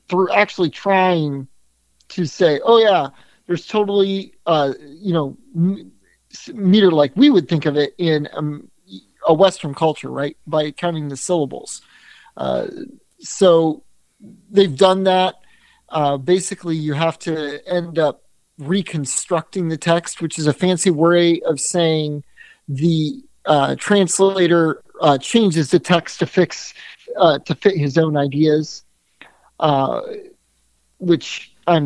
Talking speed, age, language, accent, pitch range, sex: 130 wpm, 40-59, English, American, 150-185 Hz, male